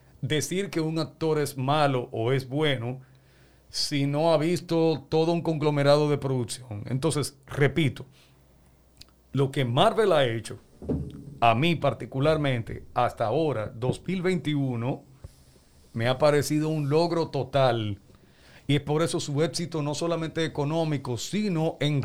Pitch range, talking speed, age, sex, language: 130-160 Hz, 130 wpm, 50-69, male, Spanish